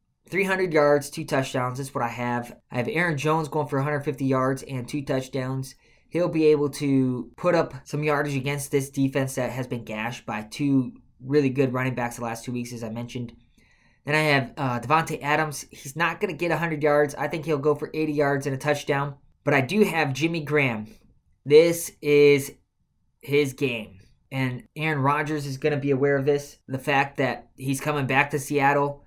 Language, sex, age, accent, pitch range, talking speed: English, male, 20-39, American, 130-155 Hz, 200 wpm